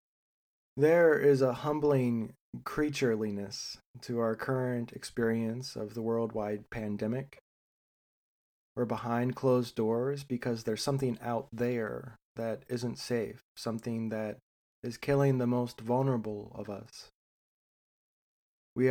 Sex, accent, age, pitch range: male, American, 20-39, 115-135 Hz